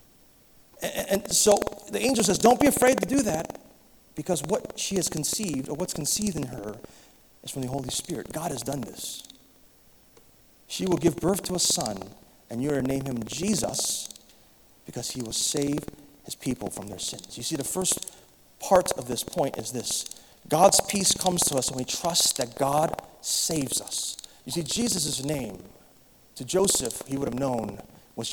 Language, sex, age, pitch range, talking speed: English, male, 30-49, 145-200 Hz, 180 wpm